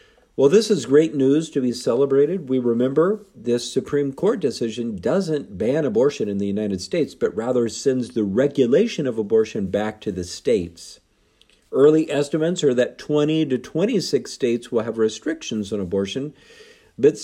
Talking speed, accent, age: 160 wpm, American, 50-69